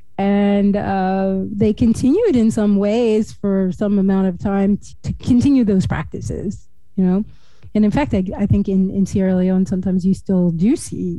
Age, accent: 30-49, American